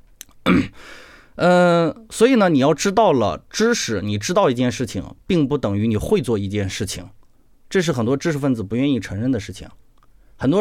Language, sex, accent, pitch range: Chinese, male, native, 105-150 Hz